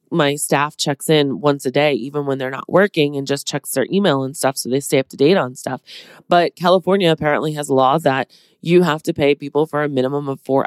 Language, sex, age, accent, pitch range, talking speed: English, female, 20-39, American, 135-175 Hz, 240 wpm